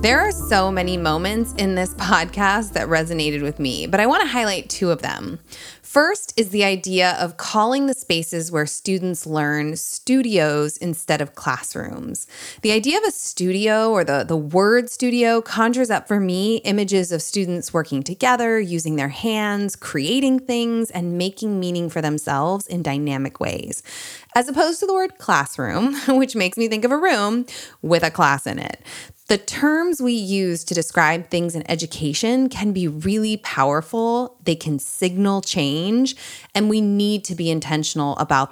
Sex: female